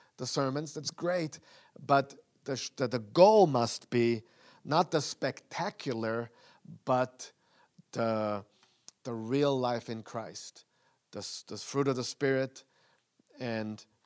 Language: English